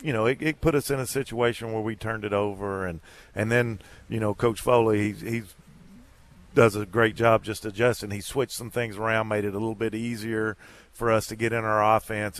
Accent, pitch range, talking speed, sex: American, 105-120 Hz, 225 wpm, male